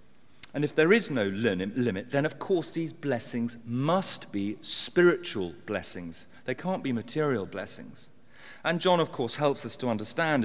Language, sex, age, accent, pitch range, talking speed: English, male, 40-59, British, 110-155 Hz, 160 wpm